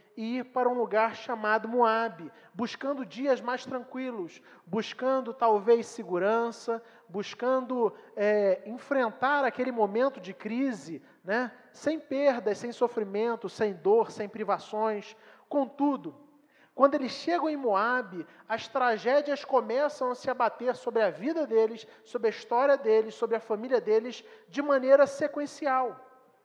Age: 40-59